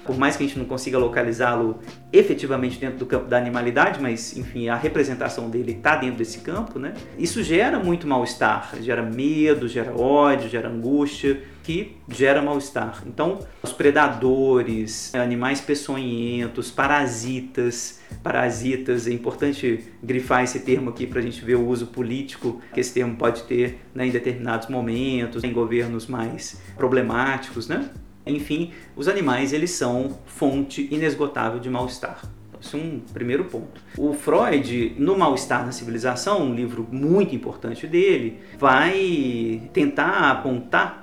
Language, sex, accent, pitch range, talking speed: Portuguese, male, Brazilian, 120-145 Hz, 145 wpm